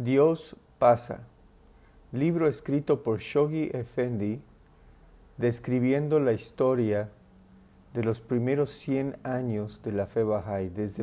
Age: 50-69